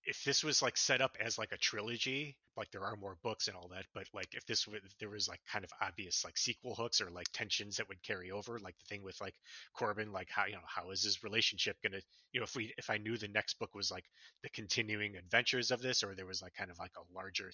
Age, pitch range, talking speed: 30-49, 95-110 Hz, 275 wpm